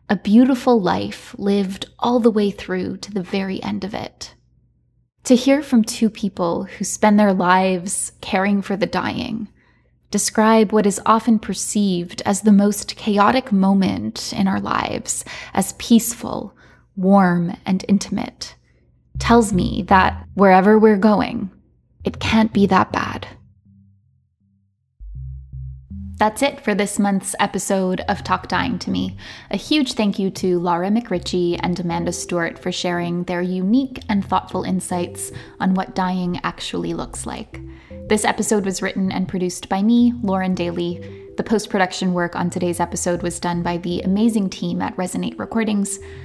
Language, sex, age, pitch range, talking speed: English, female, 20-39, 175-215 Hz, 150 wpm